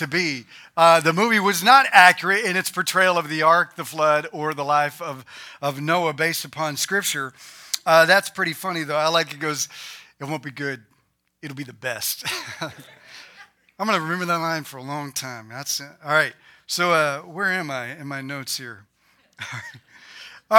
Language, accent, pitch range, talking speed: English, American, 165-230 Hz, 190 wpm